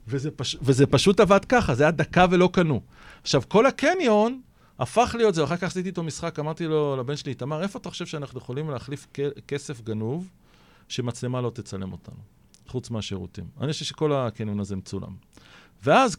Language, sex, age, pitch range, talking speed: Hebrew, male, 40-59, 115-175 Hz, 180 wpm